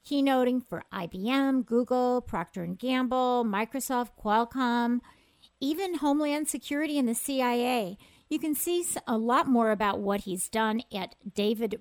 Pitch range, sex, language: 210-255 Hz, female, English